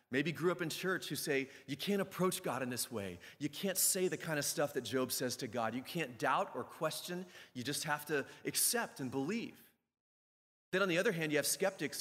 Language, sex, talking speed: English, male, 230 wpm